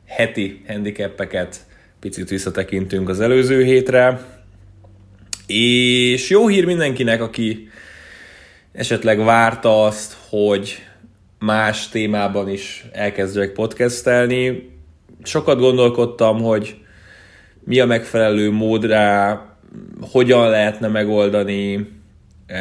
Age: 20-39